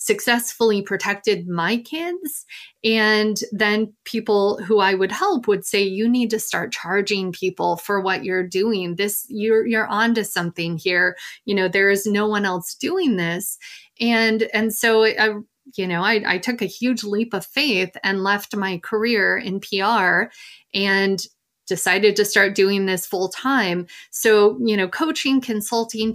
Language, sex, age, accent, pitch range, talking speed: English, female, 30-49, American, 190-225 Hz, 165 wpm